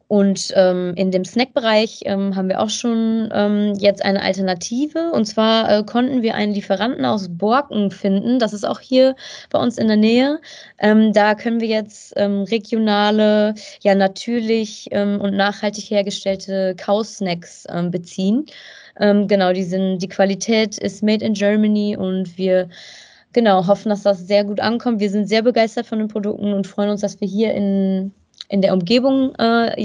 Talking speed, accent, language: 175 wpm, German, German